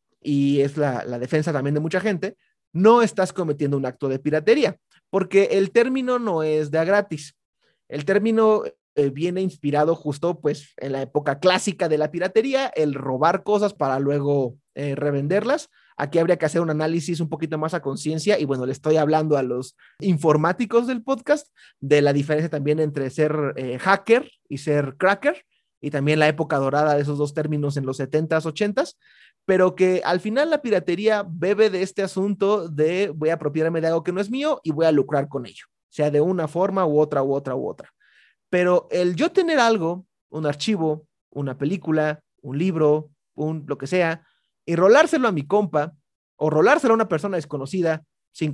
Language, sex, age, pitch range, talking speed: Spanish, male, 30-49, 145-195 Hz, 190 wpm